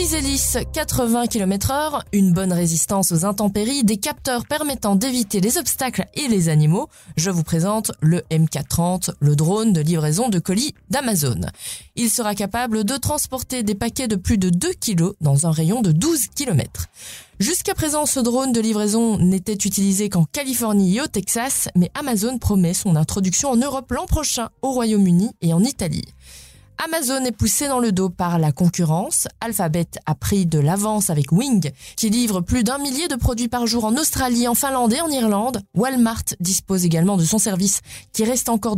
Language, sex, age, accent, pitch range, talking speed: French, female, 20-39, French, 170-245 Hz, 180 wpm